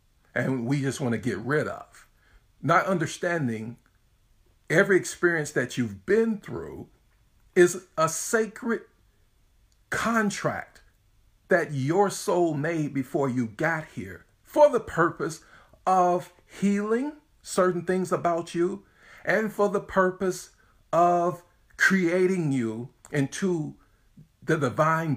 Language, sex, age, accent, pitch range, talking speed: English, male, 50-69, American, 120-175 Hz, 110 wpm